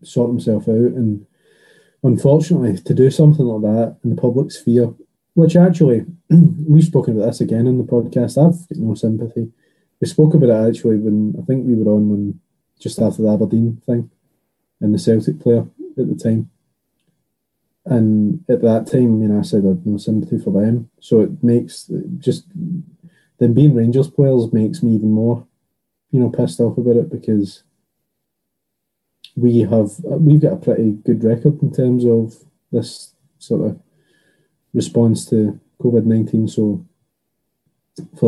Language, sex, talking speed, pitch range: English, male, 160 wpm, 110-135 Hz